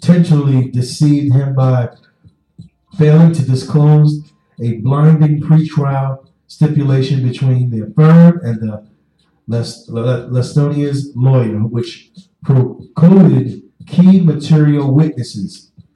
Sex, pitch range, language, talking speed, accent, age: male, 125-155 Hz, English, 85 wpm, American, 50-69